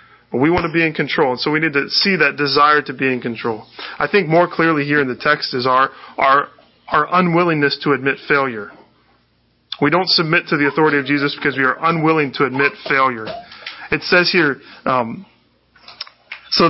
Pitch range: 135-175 Hz